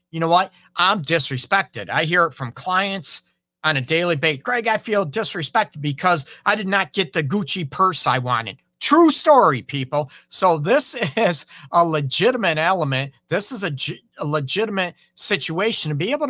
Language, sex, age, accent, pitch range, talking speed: English, male, 40-59, American, 140-185 Hz, 170 wpm